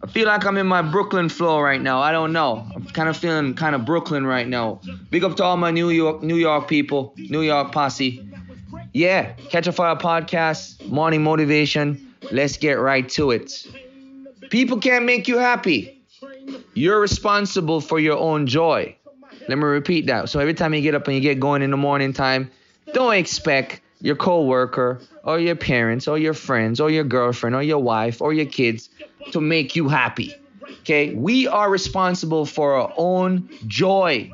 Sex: male